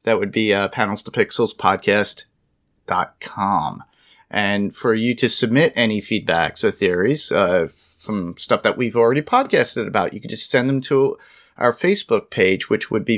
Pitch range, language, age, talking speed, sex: 100-120 Hz, English, 30-49, 175 wpm, male